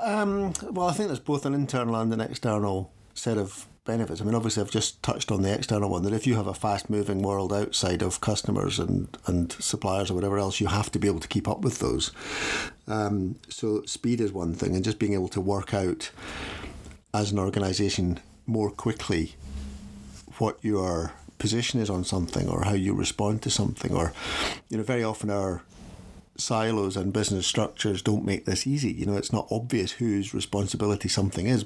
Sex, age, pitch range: male, 50-69, 95-110 Hz